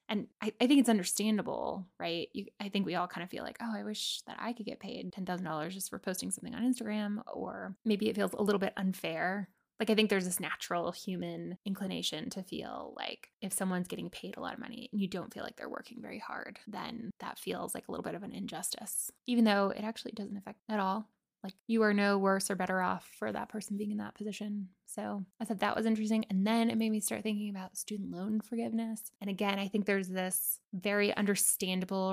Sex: female